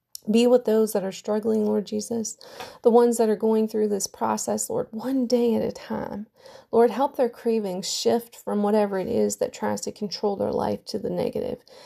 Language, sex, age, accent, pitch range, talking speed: English, female, 30-49, American, 205-230 Hz, 200 wpm